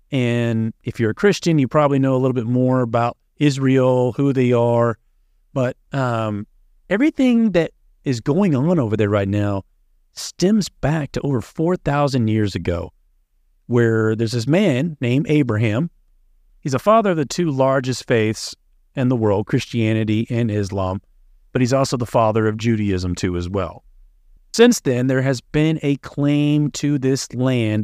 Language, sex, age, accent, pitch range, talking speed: English, male, 40-59, American, 110-145 Hz, 160 wpm